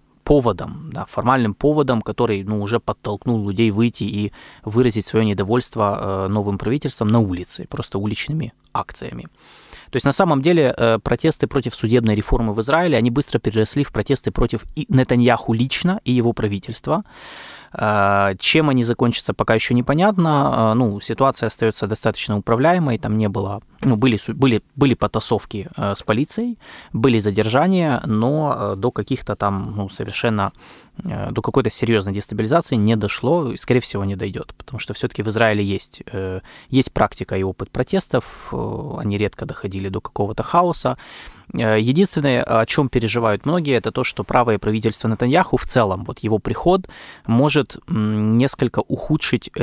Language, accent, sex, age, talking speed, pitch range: Russian, native, male, 20-39, 145 wpm, 105-135 Hz